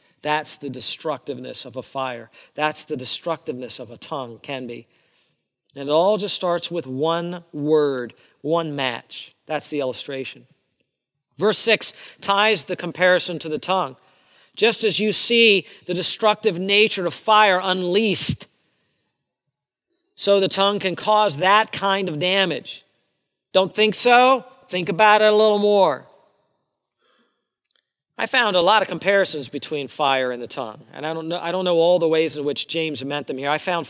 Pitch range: 155-205 Hz